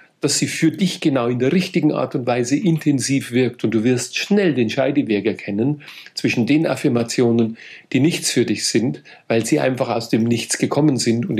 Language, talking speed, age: German, 195 wpm, 50-69